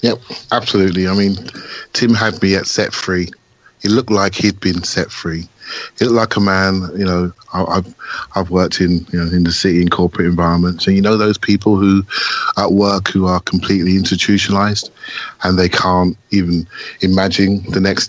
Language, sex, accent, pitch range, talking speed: English, male, British, 90-125 Hz, 185 wpm